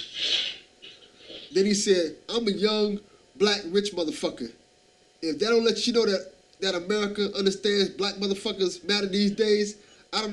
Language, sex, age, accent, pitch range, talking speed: English, male, 20-39, American, 195-240 Hz, 150 wpm